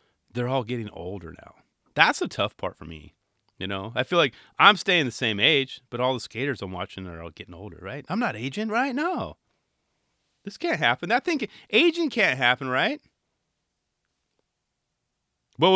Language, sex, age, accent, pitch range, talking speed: English, male, 30-49, American, 95-150 Hz, 180 wpm